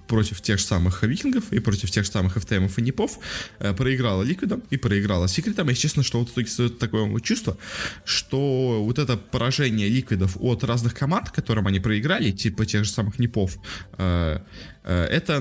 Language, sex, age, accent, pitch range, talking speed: Russian, male, 20-39, native, 105-130 Hz, 165 wpm